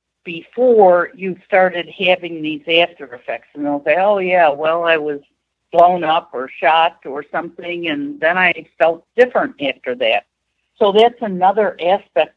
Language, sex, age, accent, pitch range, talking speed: English, female, 60-79, American, 155-195 Hz, 155 wpm